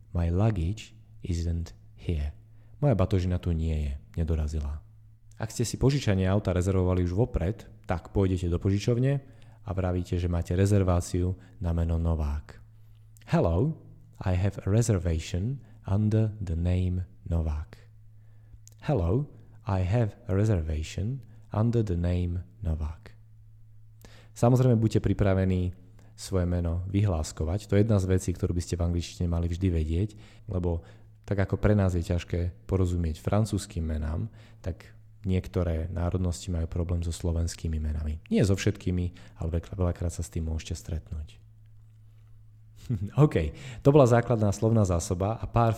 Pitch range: 85-110 Hz